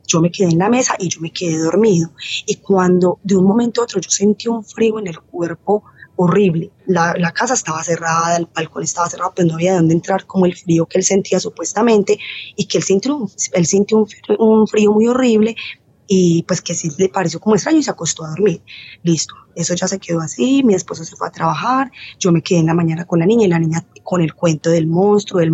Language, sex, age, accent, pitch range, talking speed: Spanish, female, 20-39, Colombian, 165-200 Hz, 245 wpm